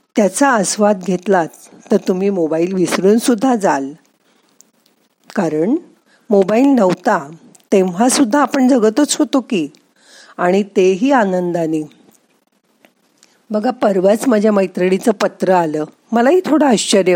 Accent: native